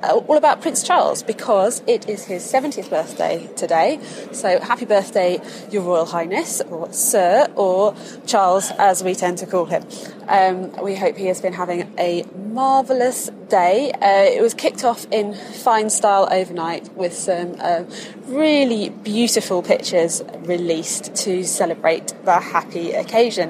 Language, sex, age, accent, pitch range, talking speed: English, female, 20-39, British, 180-230 Hz, 145 wpm